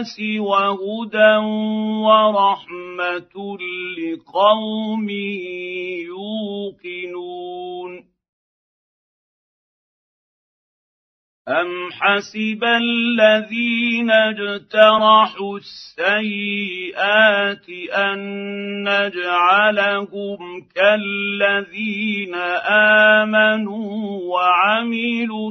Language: Arabic